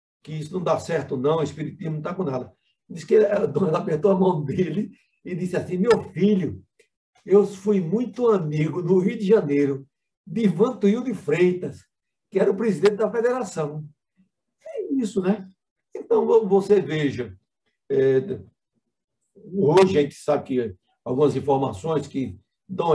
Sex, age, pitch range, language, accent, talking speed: male, 60-79, 140-195 Hz, Portuguese, Brazilian, 150 wpm